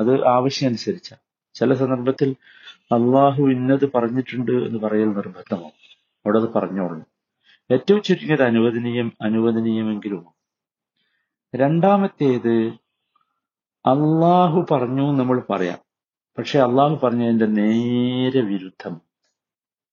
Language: Malayalam